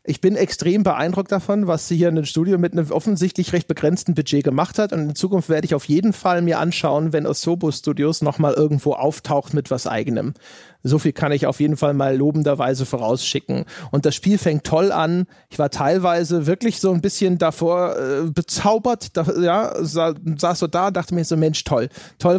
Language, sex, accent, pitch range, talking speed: German, male, German, 150-185 Hz, 210 wpm